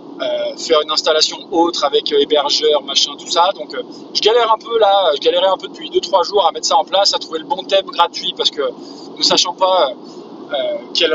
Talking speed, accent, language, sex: 230 wpm, French, French, male